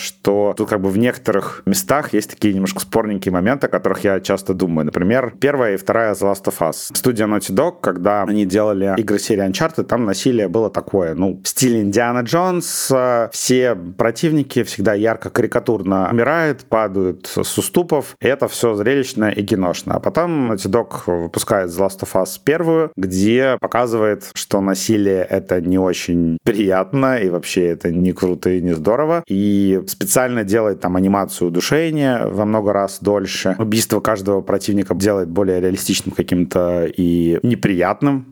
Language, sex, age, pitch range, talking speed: Russian, male, 30-49, 95-115 Hz, 165 wpm